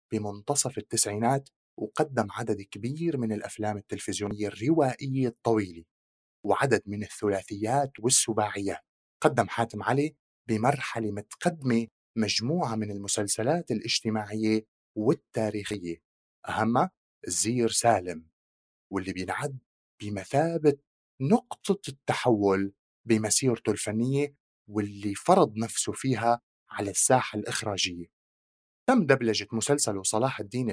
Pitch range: 105-135 Hz